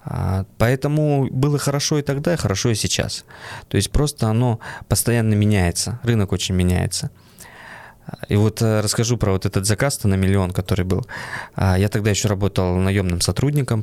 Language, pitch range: Russian, 100-130 Hz